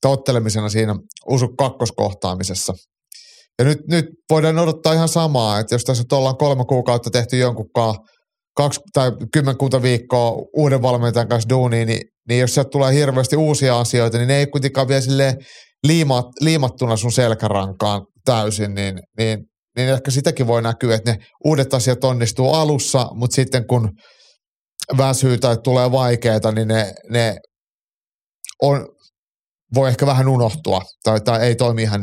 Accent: native